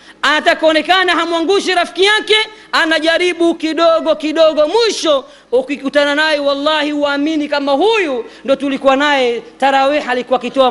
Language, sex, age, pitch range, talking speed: Swahili, female, 40-59, 255-330 Hz, 130 wpm